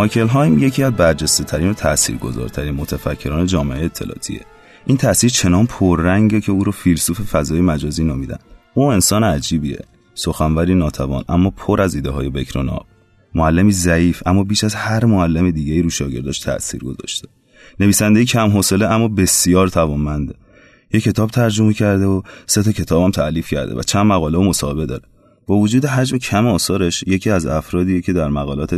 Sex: male